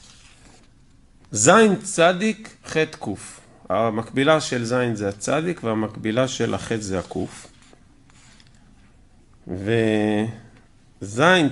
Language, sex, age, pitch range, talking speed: Hebrew, male, 50-69, 105-140 Hz, 80 wpm